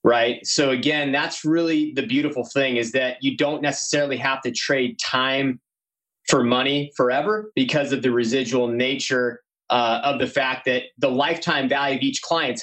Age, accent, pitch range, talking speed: 20-39, American, 130-160 Hz, 170 wpm